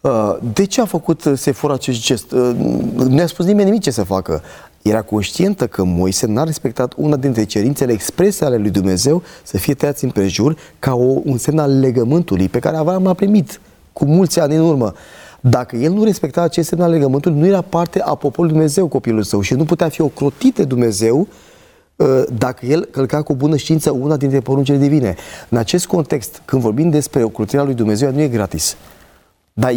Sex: male